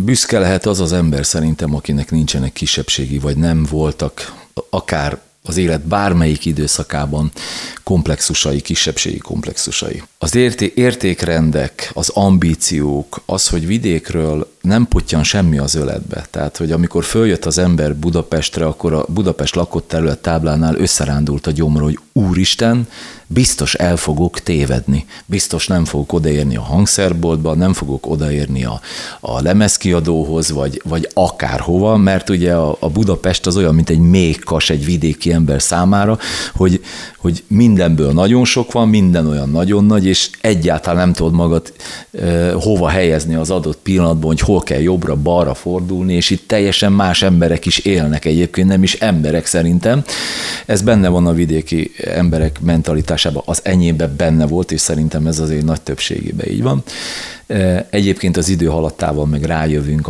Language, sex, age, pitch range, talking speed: Hungarian, male, 40-59, 75-95 Hz, 145 wpm